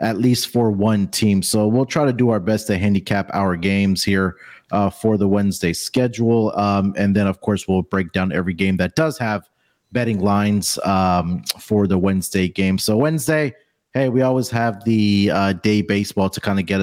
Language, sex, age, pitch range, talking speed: English, male, 30-49, 95-120 Hz, 200 wpm